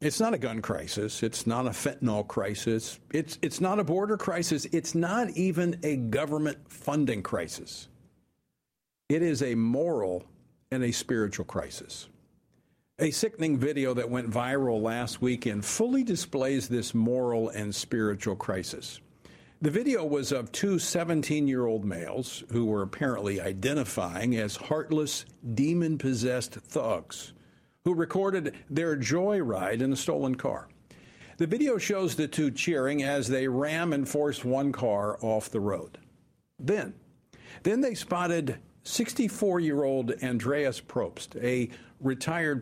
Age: 50-69